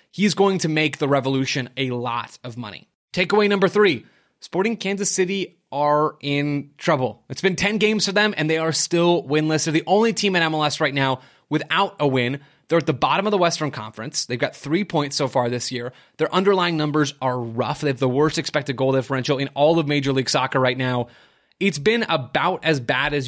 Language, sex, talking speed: English, male, 215 wpm